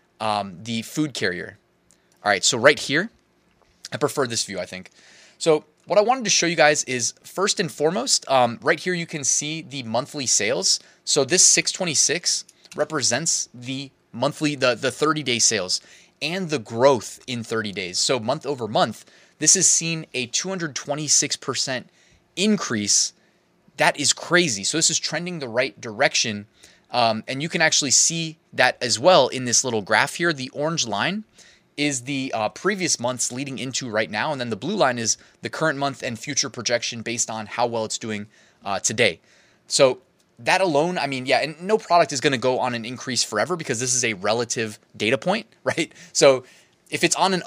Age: 20-39